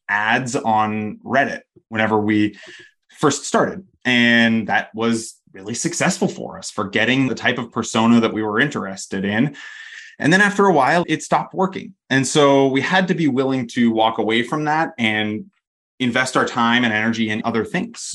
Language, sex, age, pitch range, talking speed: English, male, 20-39, 110-140 Hz, 180 wpm